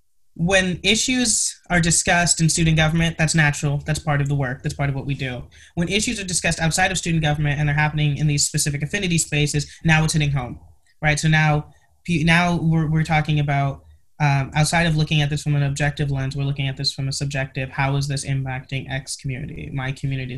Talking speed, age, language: 215 wpm, 20-39, English